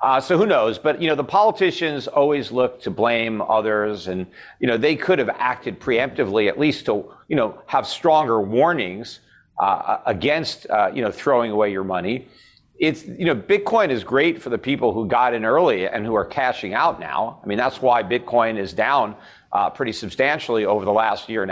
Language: English